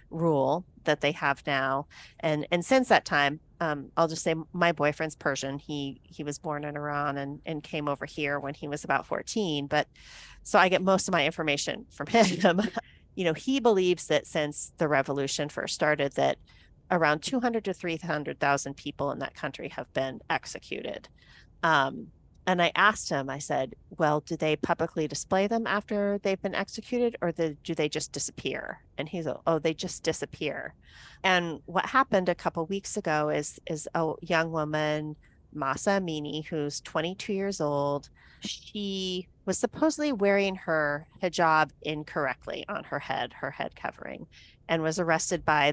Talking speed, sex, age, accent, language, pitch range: 170 wpm, female, 40-59, American, English, 145-185 Hz